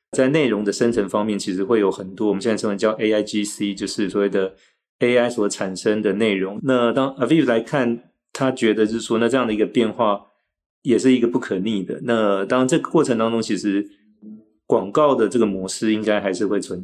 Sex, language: male, Chinese